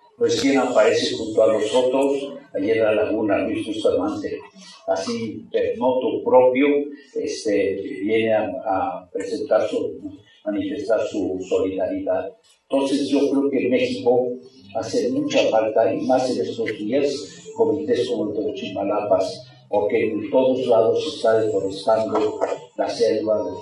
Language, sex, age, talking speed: Spanish, male, 50-69, 135 wpm